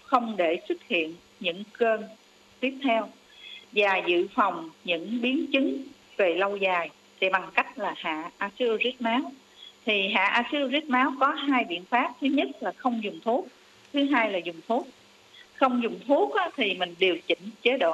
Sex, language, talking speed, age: female, Vietnamese, 175 wpm, 50-69